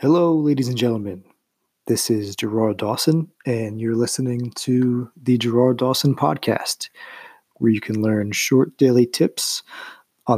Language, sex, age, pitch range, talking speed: English, male, 30-49, 110-140 Hz, 140 wpm